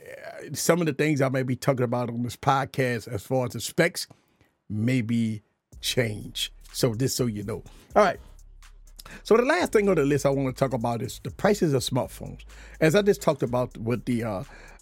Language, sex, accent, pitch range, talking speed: English, male, American, 130-190 Hz, 205 wpm